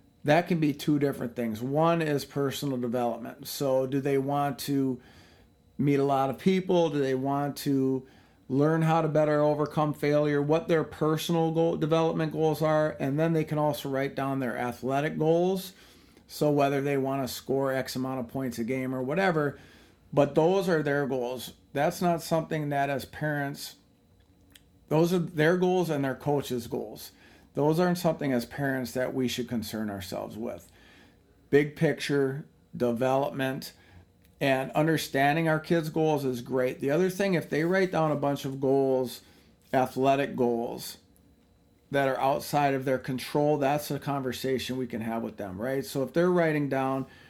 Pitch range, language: 130-155 Hz, English